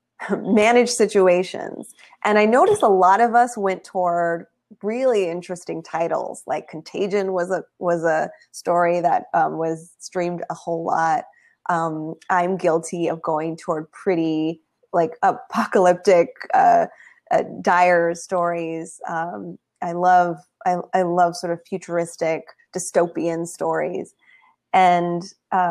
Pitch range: 170-205 Hz